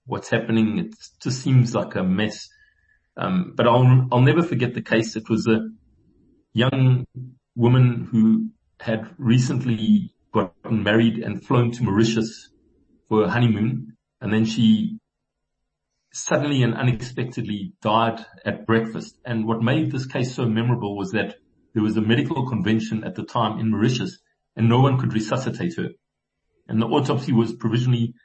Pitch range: 110-130 Hz